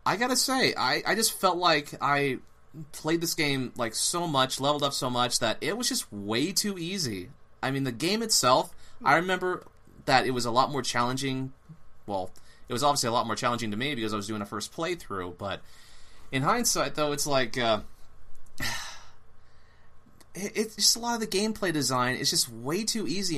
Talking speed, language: 200 wpm, English